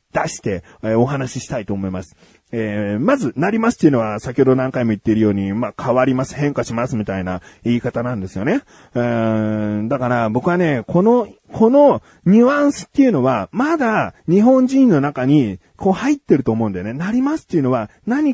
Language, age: Japanese, 30-49